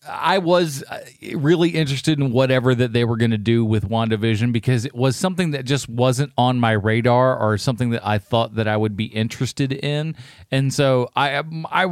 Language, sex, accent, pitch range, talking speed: English, male, American, 115-145 Hz, 195 wpm